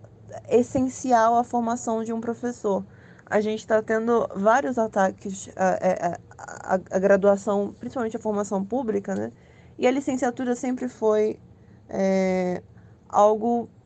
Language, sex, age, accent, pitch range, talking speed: Portuguese, female, 20-39, Brazilian, 200-240 Hz, 120 wpm